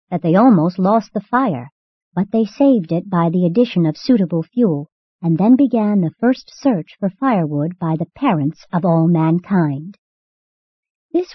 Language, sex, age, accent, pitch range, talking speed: English, male, 50-69, American, 165-220 Hz, 165 wpm